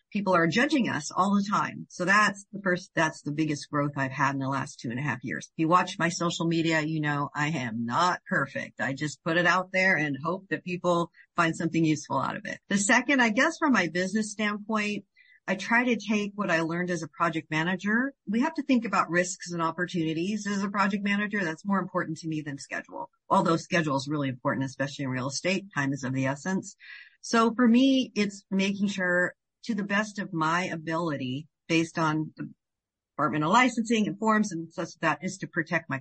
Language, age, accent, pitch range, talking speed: English, 50-69, American, 155-200 Hz, 220 wpm